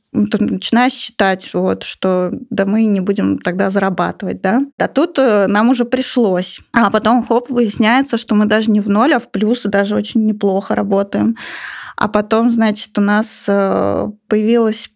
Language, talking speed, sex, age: Russian, 160 wpm, female, 20-39